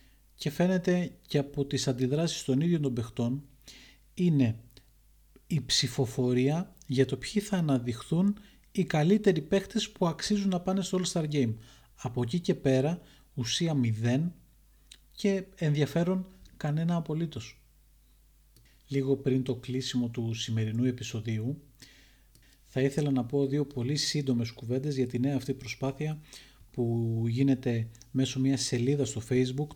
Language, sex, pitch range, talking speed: Greek, male, 120-145 Hz, 135 wpm